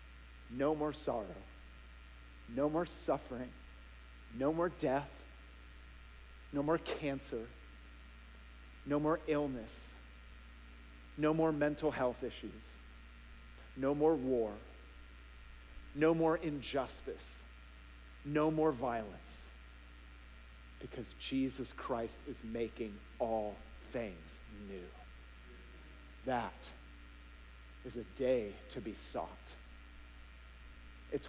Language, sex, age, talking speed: English, male, 40-59, 85 wpm